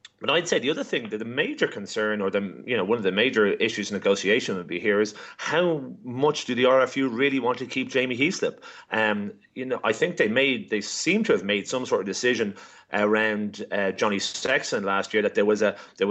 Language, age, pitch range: English, 30-49, 110-145 Hz